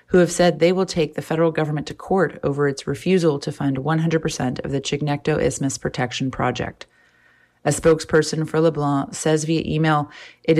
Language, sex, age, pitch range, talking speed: English, female, 30-49, 140-160 Hz, 175 wpm